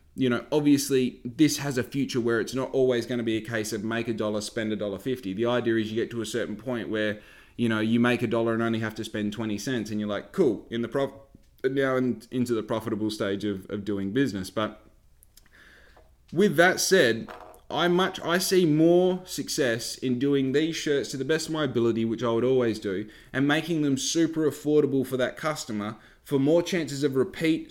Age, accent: 20-39, Australian